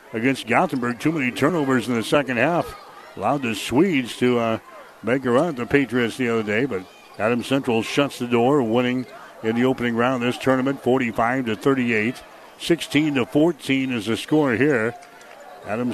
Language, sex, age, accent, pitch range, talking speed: English, male, 60-79, American, 125-150 Hz, 170 wpm